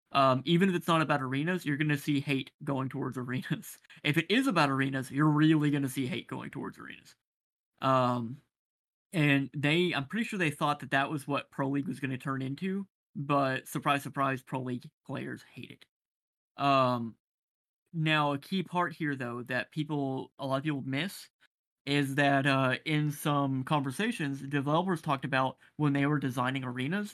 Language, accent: English, American